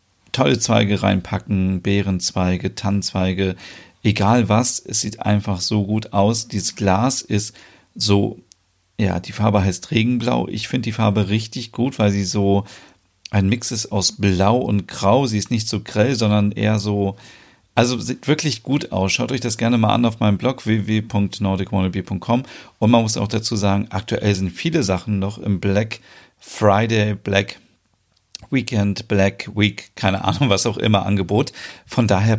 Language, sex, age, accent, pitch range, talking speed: German, male, 40-59, German, 100-115 Hz, 160 wpm